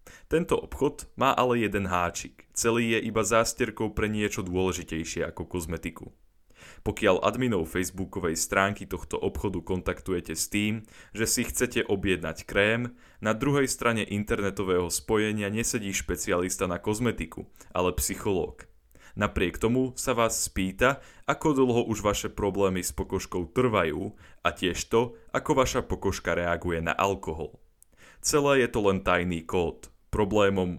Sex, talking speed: male, 135 wpm